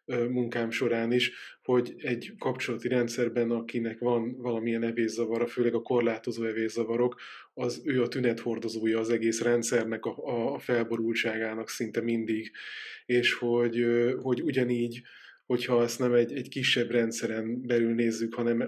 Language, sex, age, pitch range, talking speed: Hungarian, male, 20-39, 115-125 Hz, 130 wpm